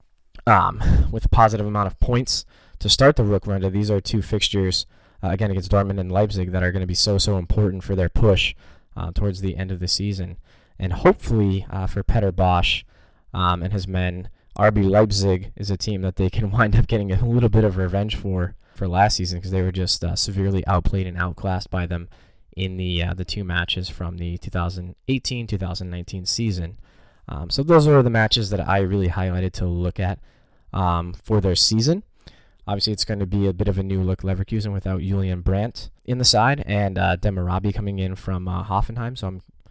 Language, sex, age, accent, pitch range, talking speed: English, male, 10-29, American, 90-105 Hz, 205 wpm